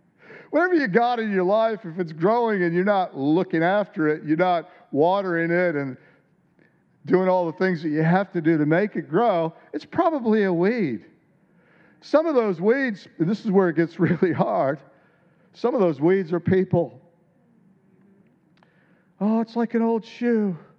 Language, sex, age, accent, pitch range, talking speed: English, male, 50-69, American, 165-210 Hz, 175 wpm